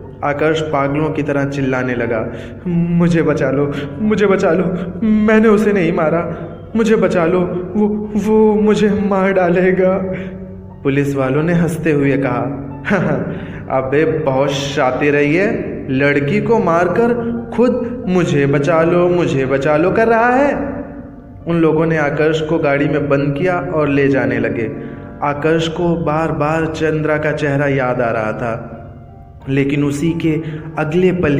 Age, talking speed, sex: 20-39, 150 wpm, male